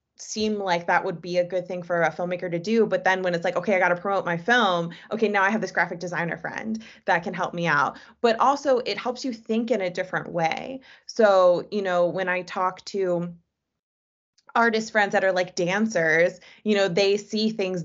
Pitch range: 175-205 Hz